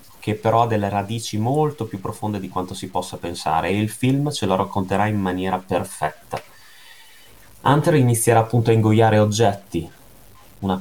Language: Italian